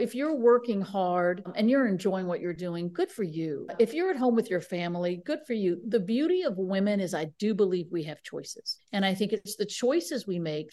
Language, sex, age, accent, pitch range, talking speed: English, female, 50-69, American, 175-235 Hz, 235 wpm